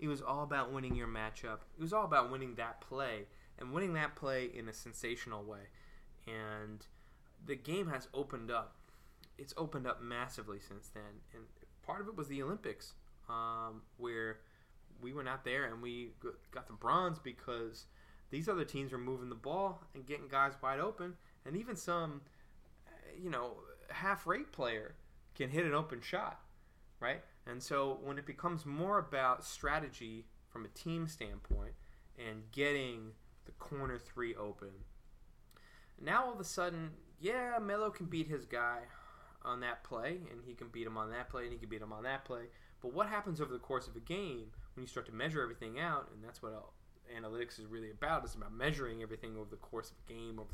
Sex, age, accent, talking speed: male, 20-39, American, 190 wpm